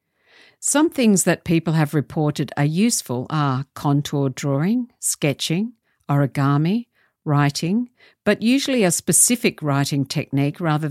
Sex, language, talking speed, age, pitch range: female, English, 115 wpm, 50-69, 140-180 Hz